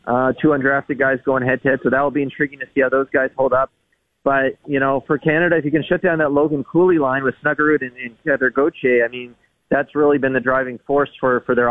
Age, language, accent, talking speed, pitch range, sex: 30-49, English, American, 260 wpm, 125-145 Hz, male